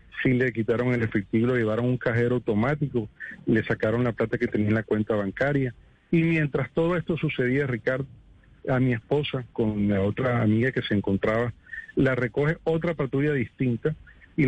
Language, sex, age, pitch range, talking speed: Spanish, male, 40-59, 110-145 Hz, 175 wpm